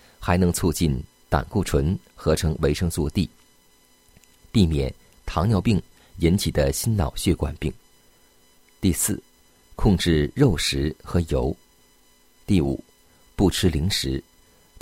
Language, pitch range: Chinese, 75-95 Hz